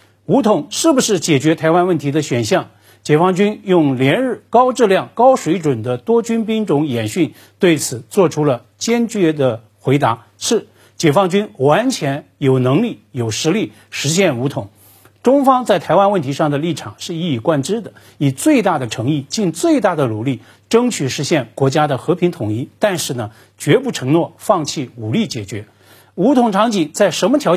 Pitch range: 125-190 Hz